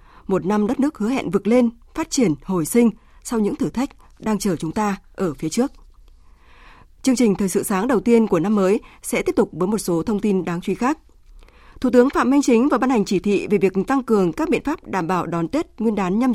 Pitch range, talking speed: 190-250 Hz, 250 wpm